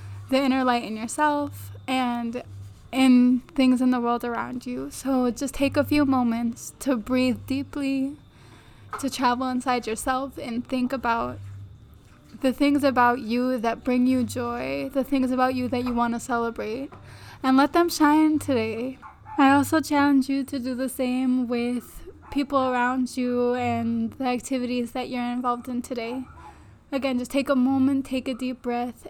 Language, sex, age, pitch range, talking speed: English, female, 10-29, 235-265 Hz, 165 wpm